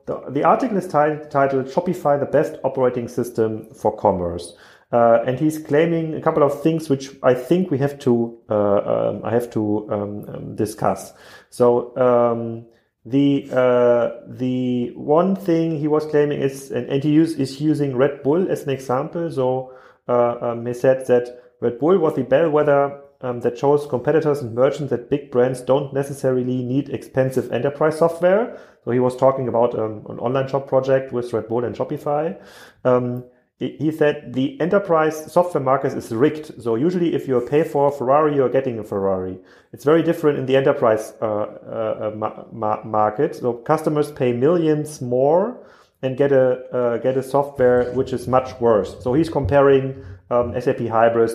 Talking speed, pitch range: 180 wpm, 120-145 Hz